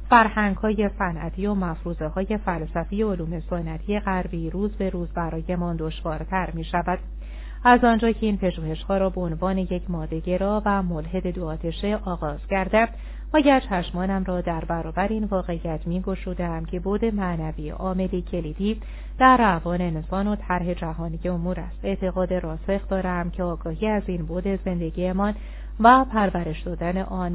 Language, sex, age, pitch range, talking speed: Persian, female, 30-49, 165-200 Hz, 150 wpm